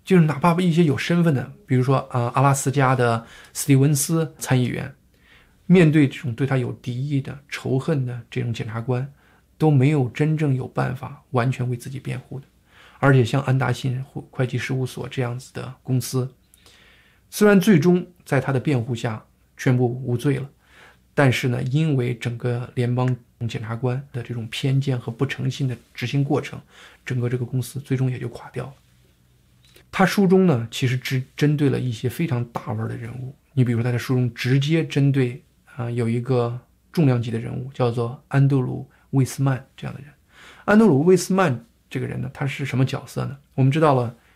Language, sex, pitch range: Chinese, male, 125-145 Hz